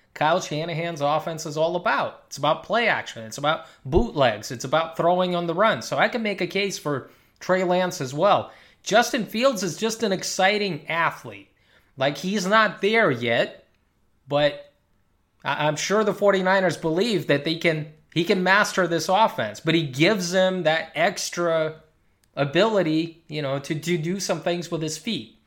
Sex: male